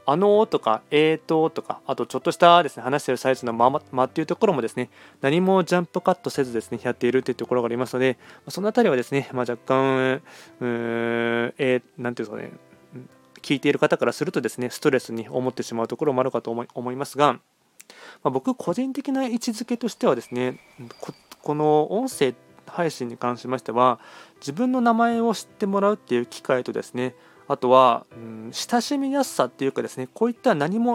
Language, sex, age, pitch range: Japanese, male, 20-39, 125-190 Hz